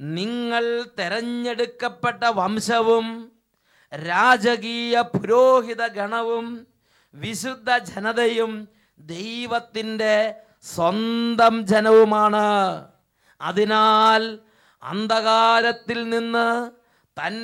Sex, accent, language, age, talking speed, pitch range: male, Indian, English, 30-49, 60 wpm, 200-235 Hz